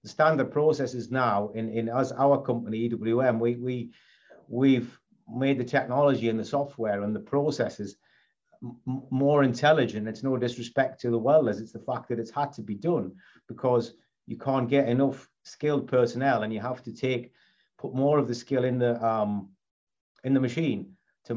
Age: 40-59